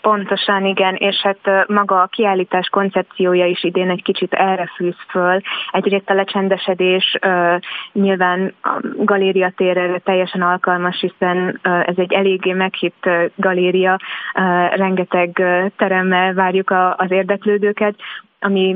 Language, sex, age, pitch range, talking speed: Hungarian, female, 20-39, 180-195 Hz, 110 wpm